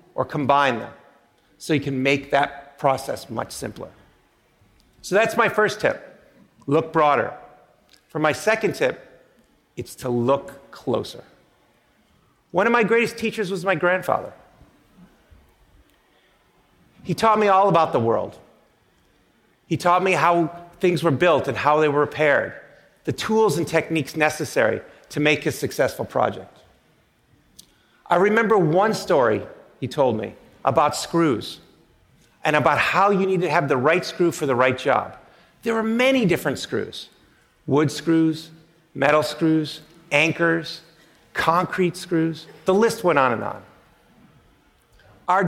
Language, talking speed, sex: English, 140 wpm, male